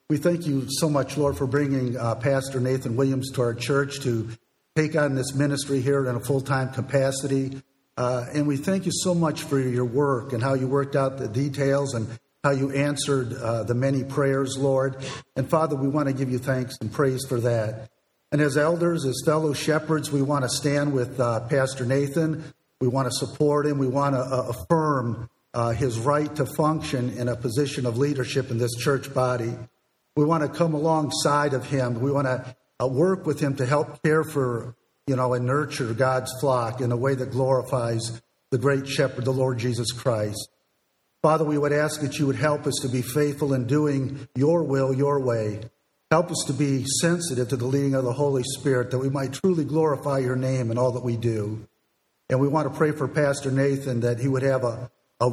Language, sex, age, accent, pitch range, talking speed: English, male, 50-69, American, 125-145 Hz, 210 wpm